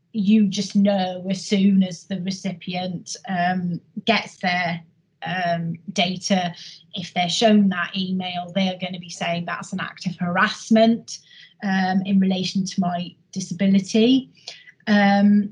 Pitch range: 180-215 Hz